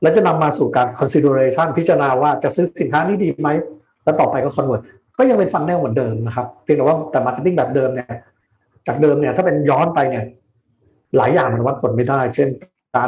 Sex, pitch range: male, 125-165 Hz